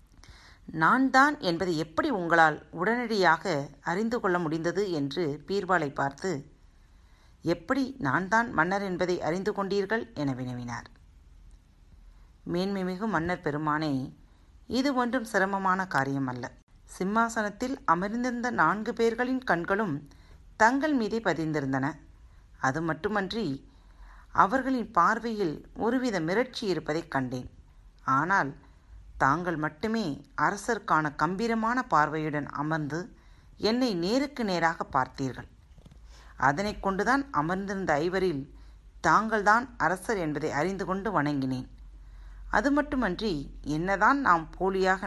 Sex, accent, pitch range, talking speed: female, native, 140-215 Hz, 90 wpm